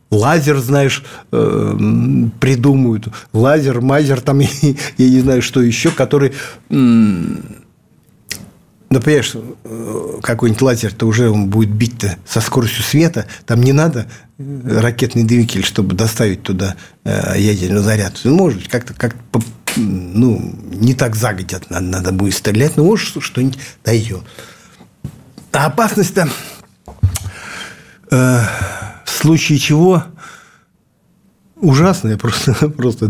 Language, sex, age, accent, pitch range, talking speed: Russian, male, 50-69, native, 115-155 Hz, 100 wpm